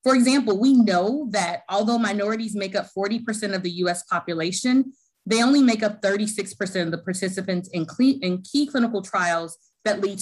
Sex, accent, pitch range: female, American, 185-250 Hz